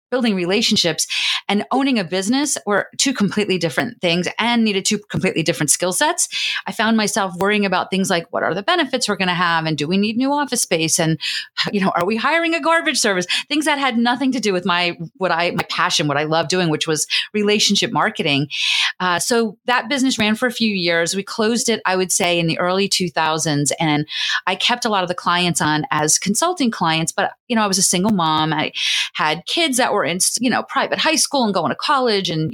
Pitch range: 175-235 Hz